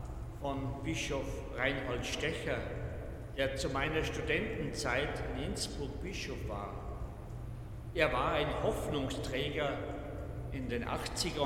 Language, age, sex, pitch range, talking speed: German, 50-69, male, 110-135 Hz, 95 wpm